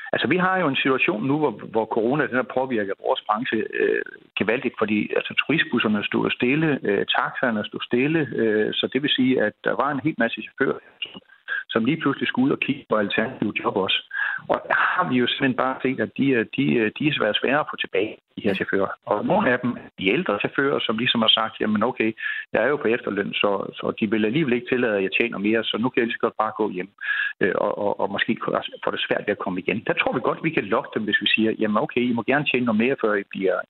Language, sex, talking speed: Danish, male, 250 wpm